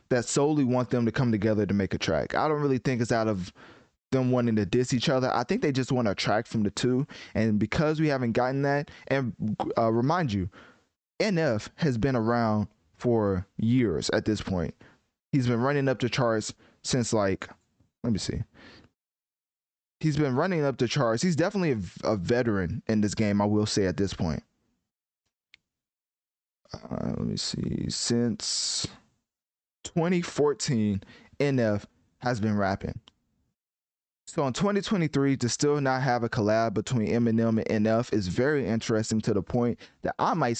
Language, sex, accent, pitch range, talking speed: English, male, American, 105-130 Hz, 170 wpm